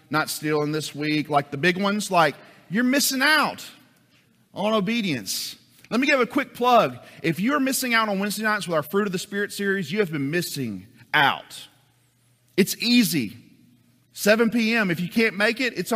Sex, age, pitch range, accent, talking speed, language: male, 40-59, 145-220 Hz, American, 185 wpm, English